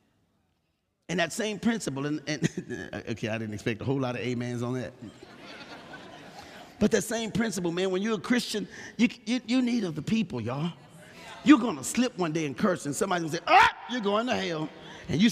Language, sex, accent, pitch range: English, male, American, 150-220 Hz